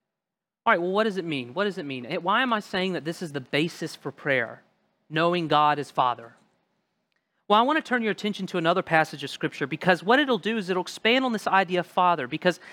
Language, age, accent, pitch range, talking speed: English, 40-59, American, 155-215 Hz, 240 wpm